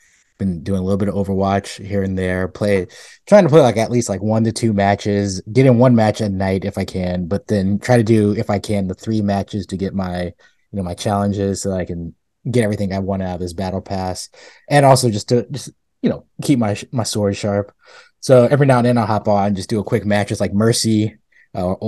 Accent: American